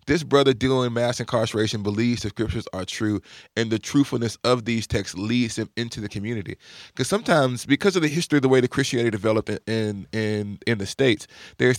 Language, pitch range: English, 110-135 Hz